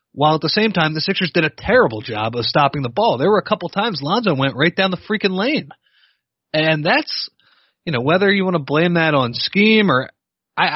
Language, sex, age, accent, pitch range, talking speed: English, male, 30-49, American, 120-180 Hz, 230 wpm